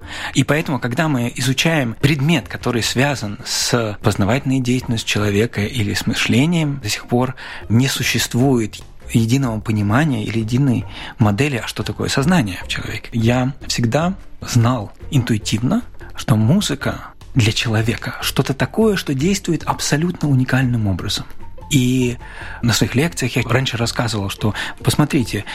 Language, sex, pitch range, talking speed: Russian, male, 110-145 Hz, 130 wpm